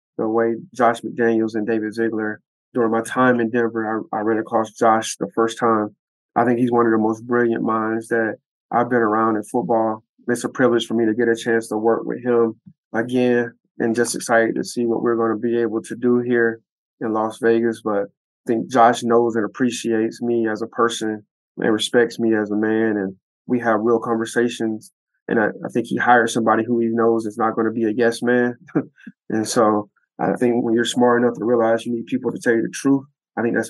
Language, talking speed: English, 225 wpm